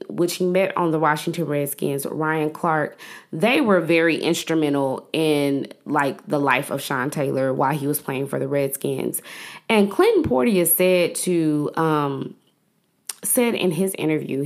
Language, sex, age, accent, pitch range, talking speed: English, female, 20-39, American, 150-190 Hz, 150 wpm